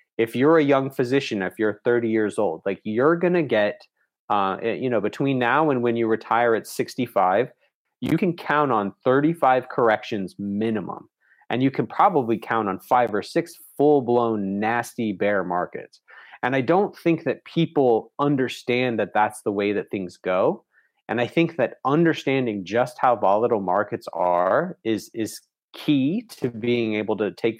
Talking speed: 170 wpm